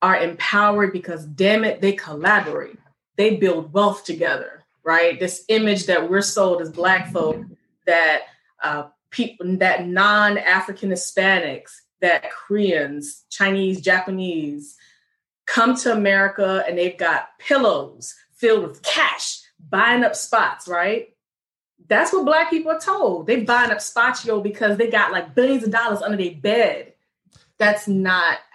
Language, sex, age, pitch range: English, female, 20-39, 175-220 Hz